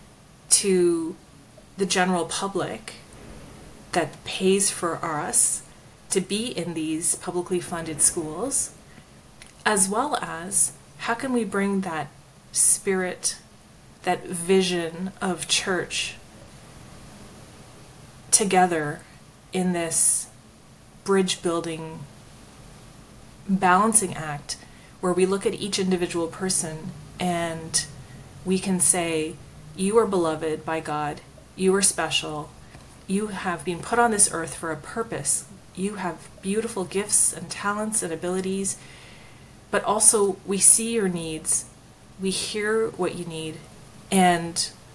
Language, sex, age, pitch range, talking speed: English, female, 30-49, 160-195 Hz, 110 wpm